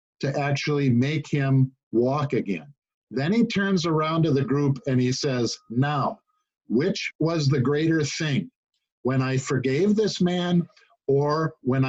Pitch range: 125-155 Hz